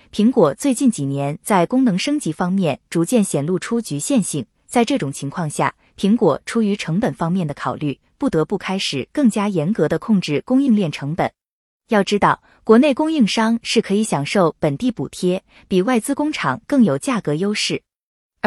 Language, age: Chinese, 20-39